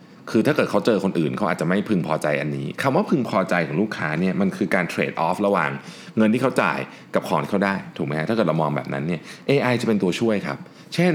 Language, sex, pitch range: Thai, male, 90-135 Hz